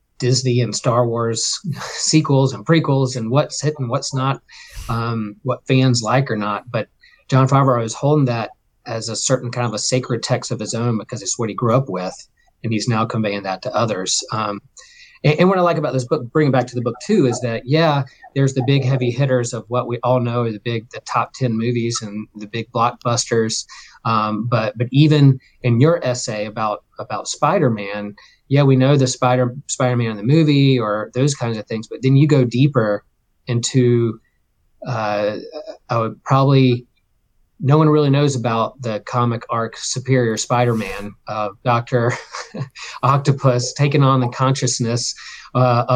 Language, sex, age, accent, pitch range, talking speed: English, male, 40-59, American, 115-140 Hz, 190 wpm